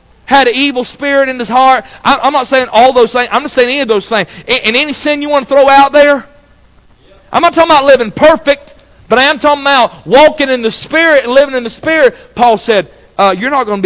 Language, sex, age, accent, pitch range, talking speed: English, male, 40-59, American, 165-255 Hz, 245 wpm